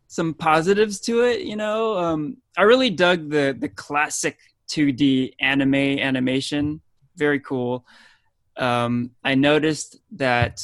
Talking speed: 125 wpm